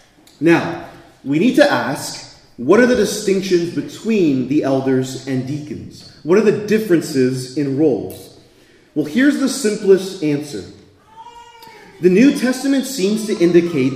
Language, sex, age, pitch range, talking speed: English, male, 30-49, 160-250 Hz, 135 wpm